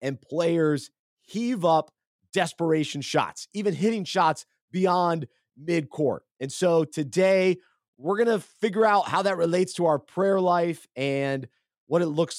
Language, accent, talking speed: English, American, 145 wpm